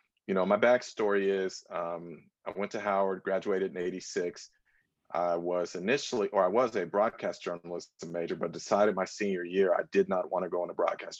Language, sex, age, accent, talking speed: English, male, 40-59, American, 195 wpm